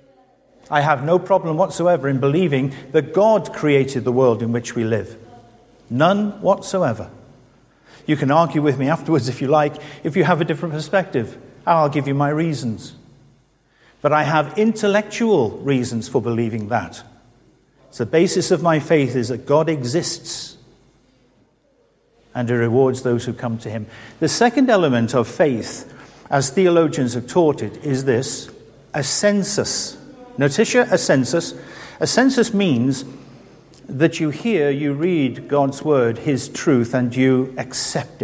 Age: 50-69